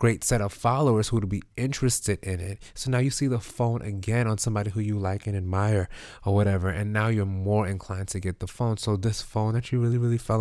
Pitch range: 100-120 Hz